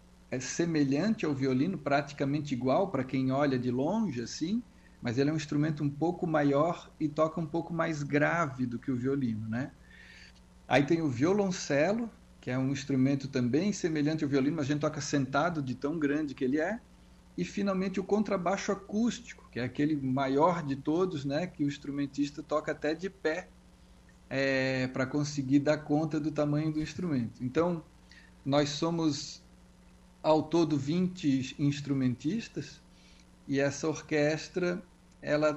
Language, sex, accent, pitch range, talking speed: Portuguese, male, Brazilian, 135-160 Hz, 150 wpm